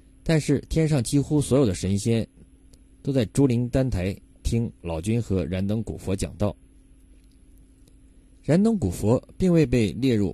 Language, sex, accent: Chinese, male, native